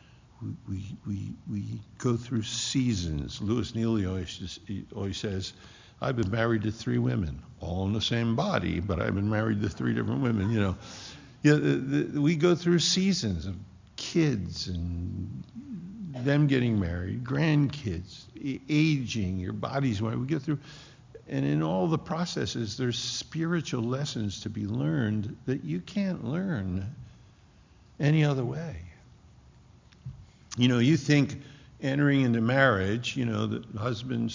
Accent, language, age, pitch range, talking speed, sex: American, English, 50-69, 100-130 Hz, 145 wpm, male